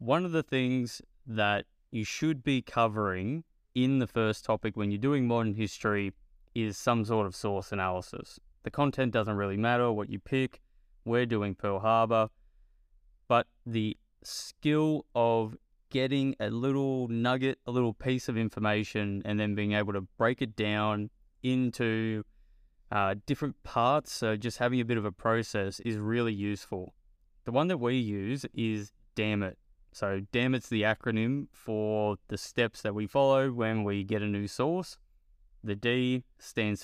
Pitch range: 100-125 Hz